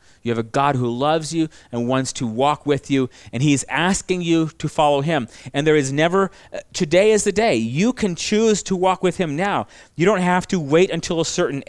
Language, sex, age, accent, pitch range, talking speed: English, male, 40-59, American, 125-165 Hz, 230 wpm